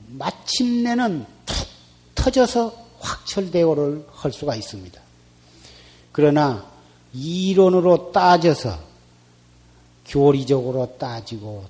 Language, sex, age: Korean, male, 40-59